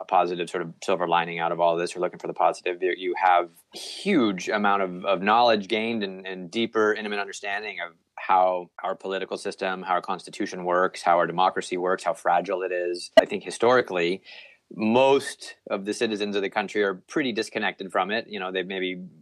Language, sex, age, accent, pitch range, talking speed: English, male, 30-49, American, 90-105 Hz, 205 wpm